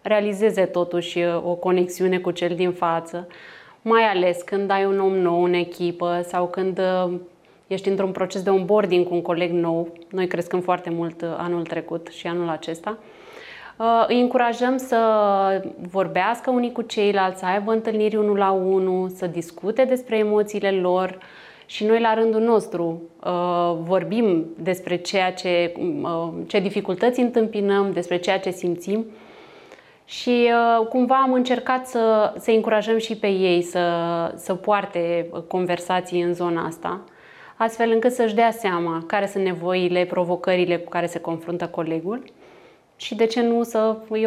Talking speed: 145 wpm